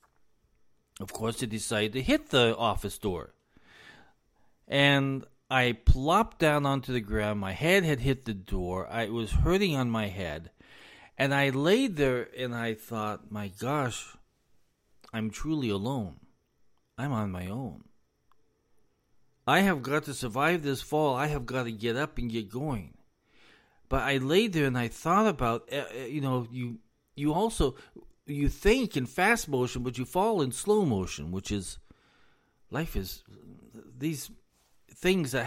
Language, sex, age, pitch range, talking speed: English, male, 40-59, 105-140 Hz, 155 wpm